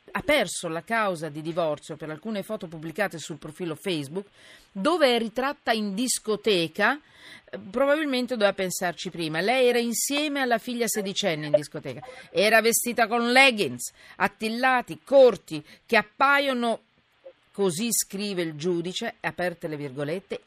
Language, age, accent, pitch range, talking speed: Italian, 40-59, native, 170-235 Hz, 130 wpm